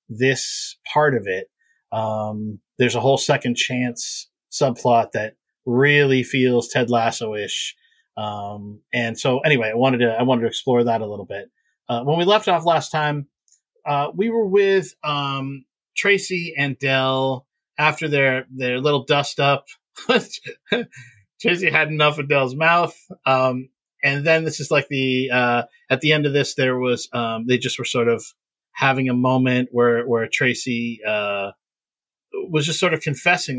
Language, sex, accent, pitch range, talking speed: English, male, American, 120-155 Hz, 165 wpm